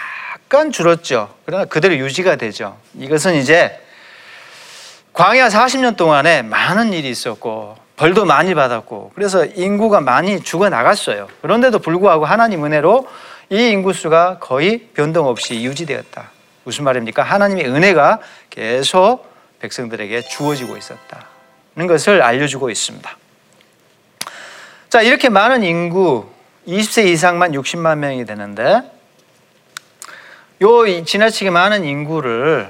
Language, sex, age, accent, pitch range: Korean, male, 40-59, native, 145-205 Hz